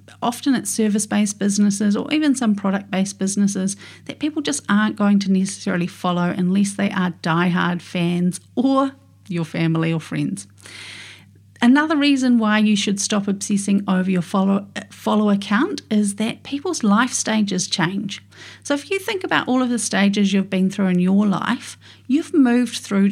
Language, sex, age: English, female, 40-59